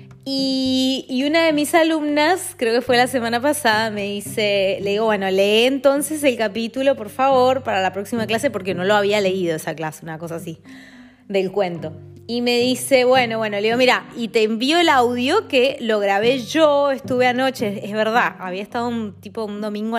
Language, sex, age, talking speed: Spanish, female, 20-39, 200 wpm